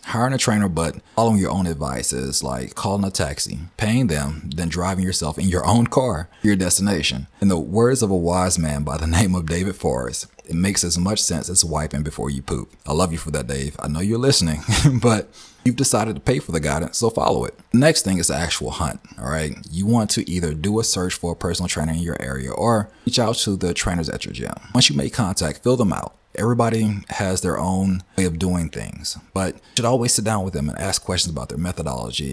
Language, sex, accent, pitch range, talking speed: English, male, American, 80-110 Hz, 240 wpm